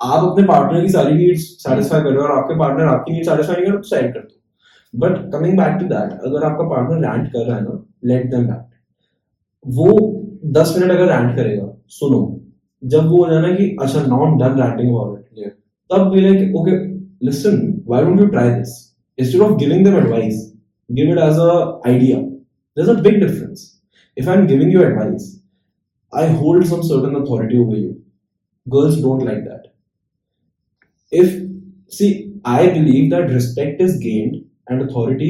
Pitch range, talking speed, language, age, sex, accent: 130-190 Hz, 70 wpm, Hindi, 10-29, male, native